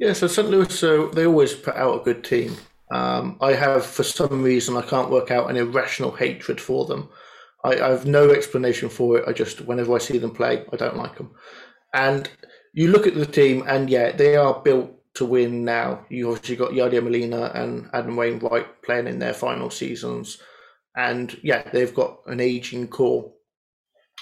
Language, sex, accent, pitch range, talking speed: English, male, British, 120-155 Hz, 195 wpm